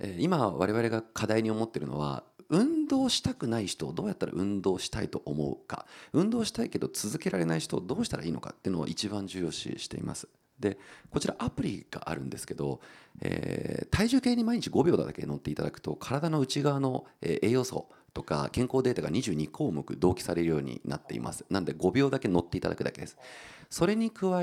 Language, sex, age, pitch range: Japanese, male, 40-59, 90-155 Hz